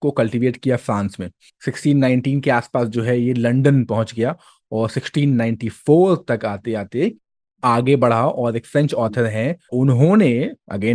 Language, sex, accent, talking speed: Hindi, male, native, 100 wpm